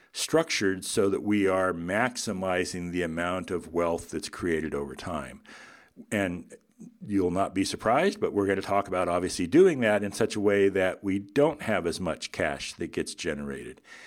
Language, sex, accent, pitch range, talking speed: English, male, American, 90-125 Hz, 180 wpm